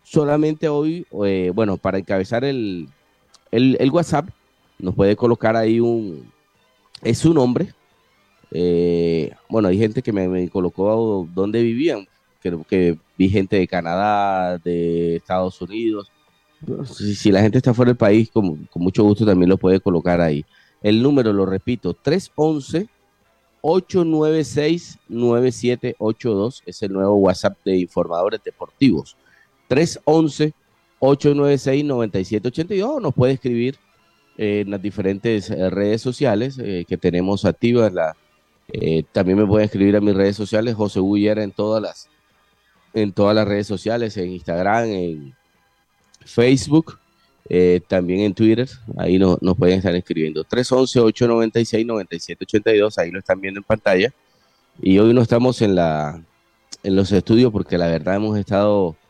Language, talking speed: Spanish, 130 wpm